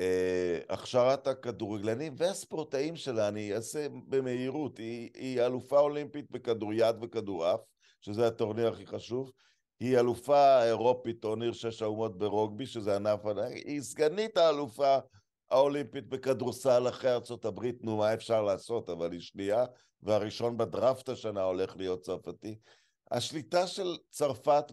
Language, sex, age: Hebrew, male, 50-69